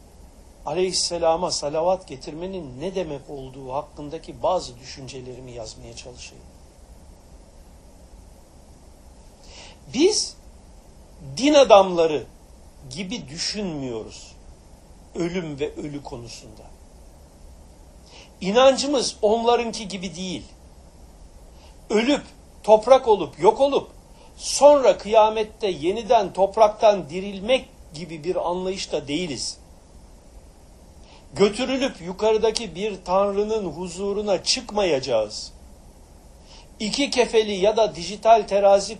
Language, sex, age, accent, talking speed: Turkish, male, 60-79, native, 75 wpm